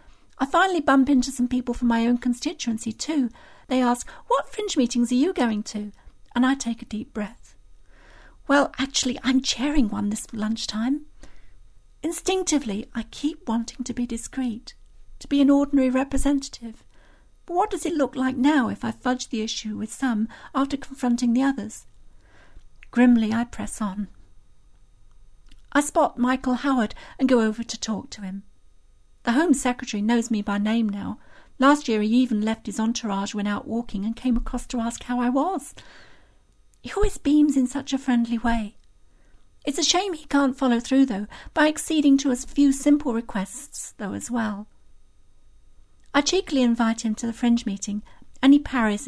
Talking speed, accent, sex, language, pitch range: 170 wpm, British, female, English, 220-275 Hz